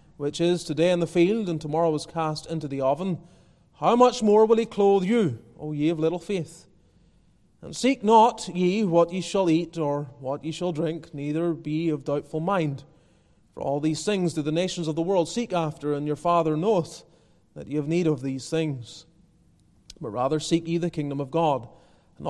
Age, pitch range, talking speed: 30-49, 150-185 Hz, 200 wpm